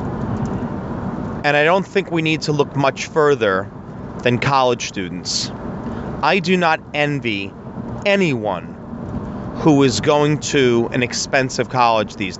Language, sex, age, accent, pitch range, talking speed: English, male, 30-49, American, 120-155 Hz, 125 wpm